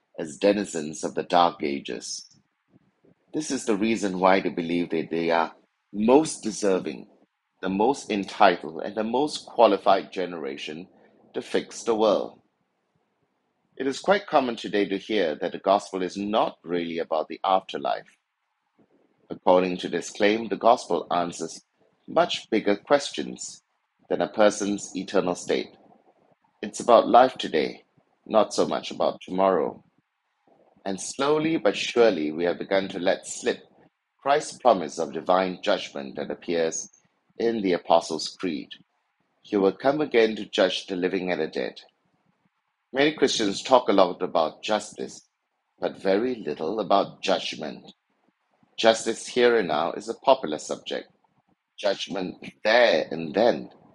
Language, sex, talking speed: English, male, 140 wpm